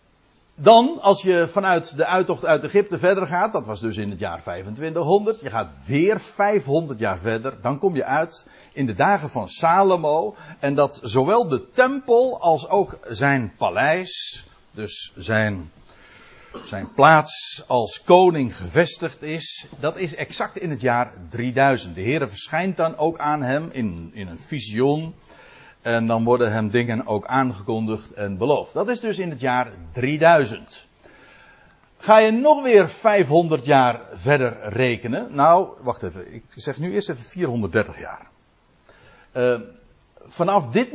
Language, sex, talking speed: Dutch, male, 150 wpm